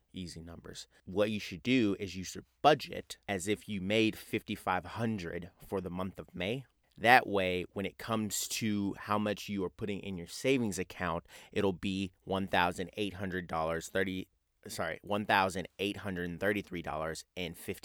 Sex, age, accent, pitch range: male, 30-49, American, 90-100 Hz